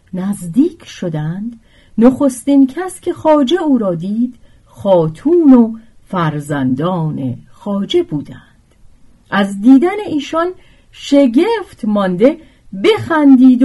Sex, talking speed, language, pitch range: female, 90 wpm, Persian, 170-275 Hz